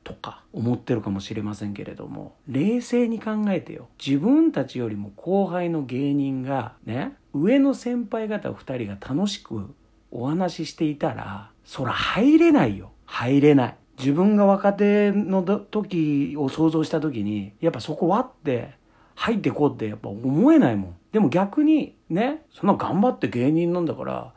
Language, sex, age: Japanese, male, 50-69